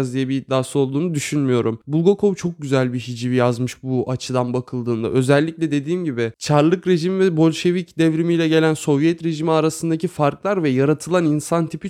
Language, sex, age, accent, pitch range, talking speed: Turkish, male, 20-39, native, 135-165 Hz, 155 wpm